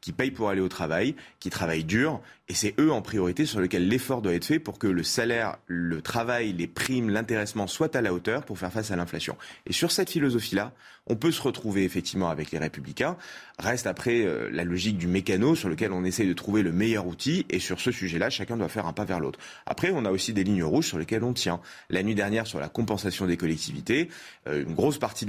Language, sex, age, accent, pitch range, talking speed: French, male, 30-49, French, 85-110 Hz, 235 wpm